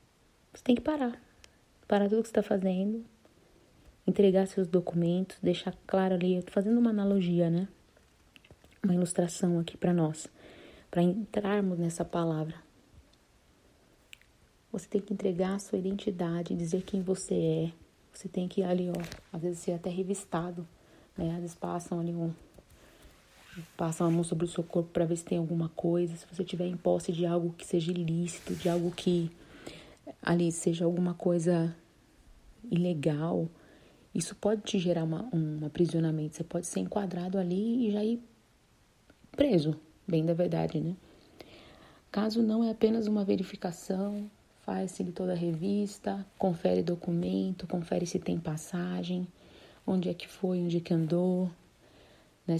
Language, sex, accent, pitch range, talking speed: Portuguese, female, Brazilian, 170-190 Hz, 155 wpm